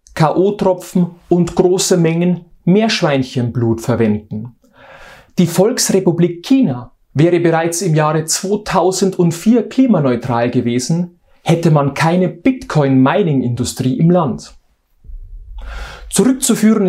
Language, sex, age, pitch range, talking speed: German, male, 40-59, 155-195 Hz, 80 wpm